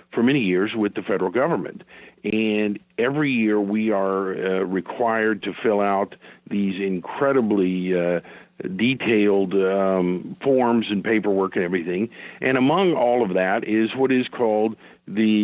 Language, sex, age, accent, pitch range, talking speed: English, male, 50-69, American, 100-130 Hz, 145 wpm